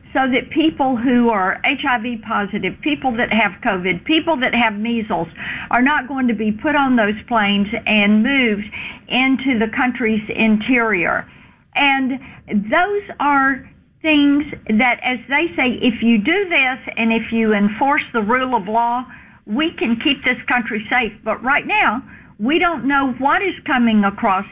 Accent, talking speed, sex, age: American, 160 wpm, female, 50-69